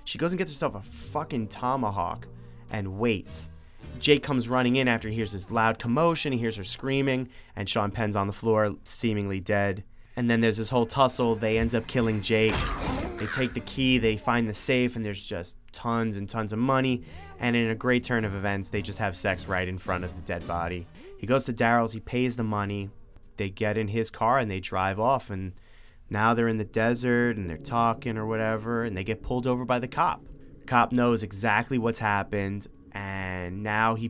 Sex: male